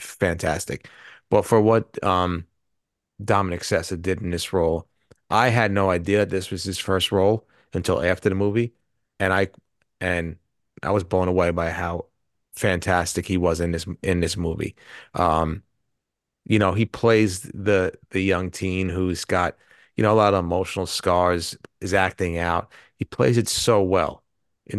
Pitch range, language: 85-100 Hz, English